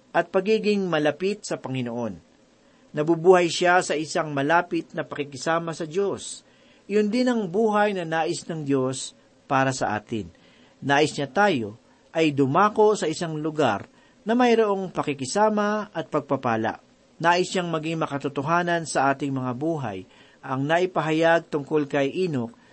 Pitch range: 145-185 Hz